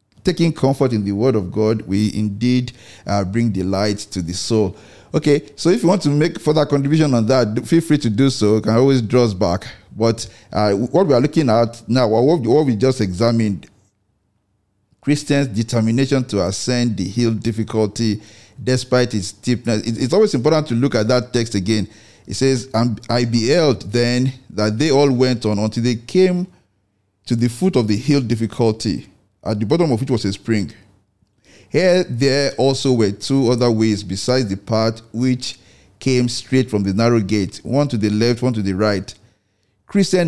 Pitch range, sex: 105-130 Hz, male